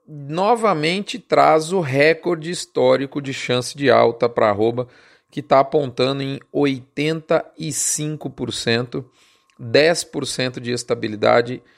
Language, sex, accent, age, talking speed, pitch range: Portuguese, male, Brazilian, 40-59, 90 wpm, 125-160 Hz